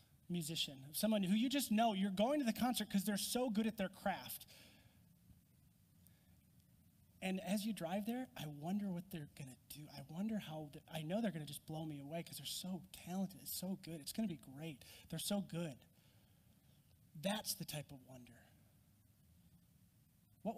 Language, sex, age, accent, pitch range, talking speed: English, male, 30-49, American, 160-215 Hz, 175 wpm